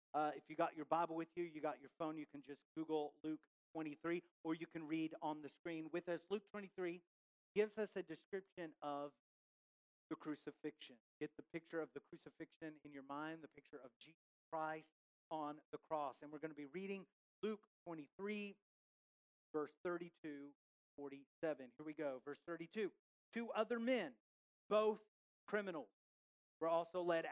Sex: male